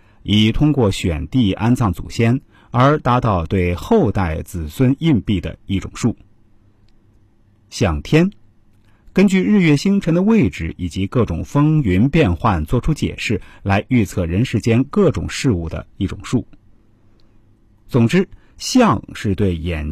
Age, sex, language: 50-69, male, Chinese